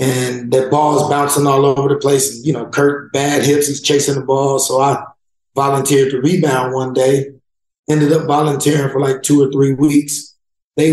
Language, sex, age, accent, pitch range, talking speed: English, male, 30-49, American, 135-155 Hz, 190 wpm